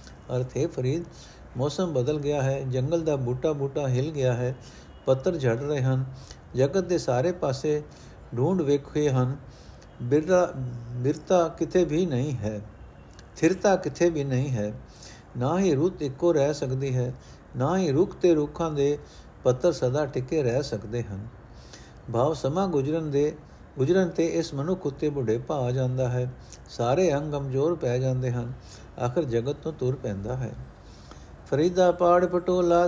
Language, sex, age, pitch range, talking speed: Punjabi, male, 60-79, 125-165 Hz, 150 wpm